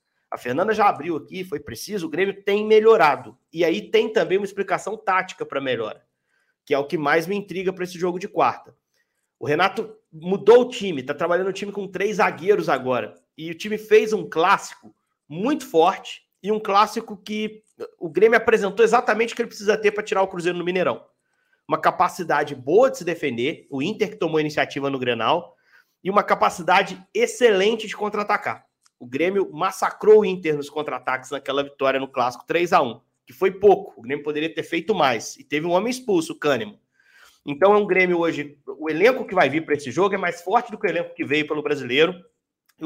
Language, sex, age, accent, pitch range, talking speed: Portuguese, male, 40-59, Brazilian, 150-215 Hz, 205 wpm